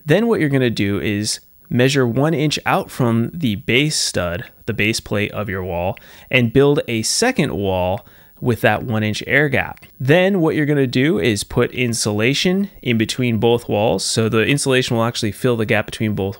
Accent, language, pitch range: American, English, 110-140 Hz